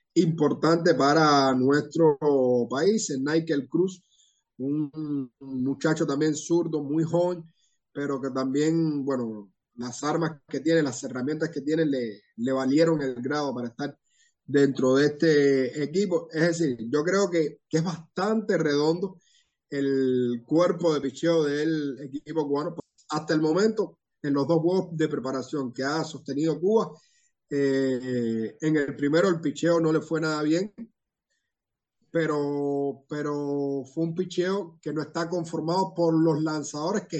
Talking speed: 145 wpm